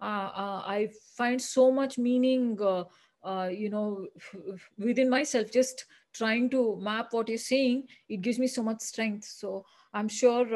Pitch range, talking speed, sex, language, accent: 210-250 Hz, 165 wpm, female, English, Indian